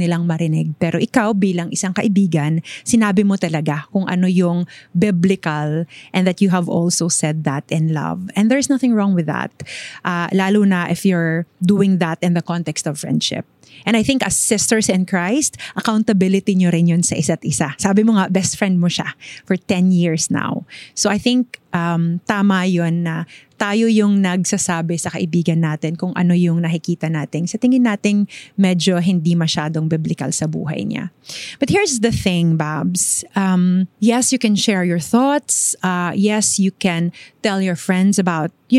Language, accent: English, Filipino